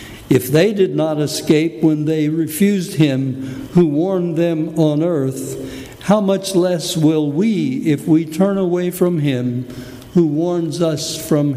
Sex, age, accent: male, 60-79, American